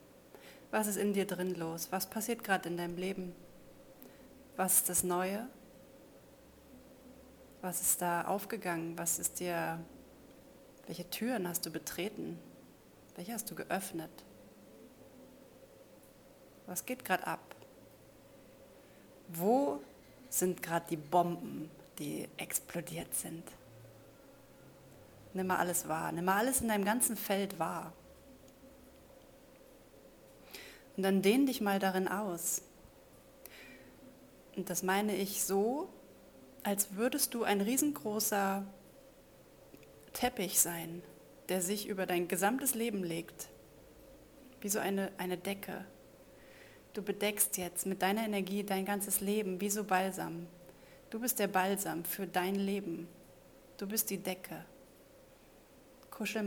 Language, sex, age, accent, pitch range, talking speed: German, female, 30-49, German, 175-220 Hz, 115 wpm